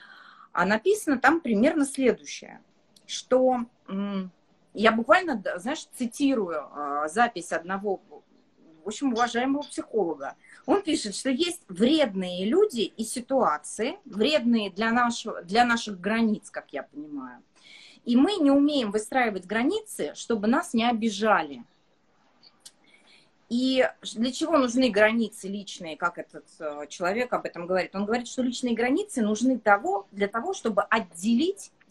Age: 30-49